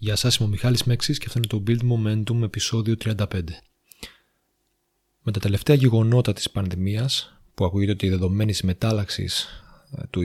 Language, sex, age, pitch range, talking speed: Greek, male, 30-49, 100-125 Hz, 160 wpm